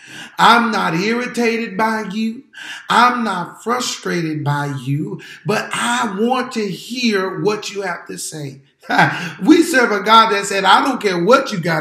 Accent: American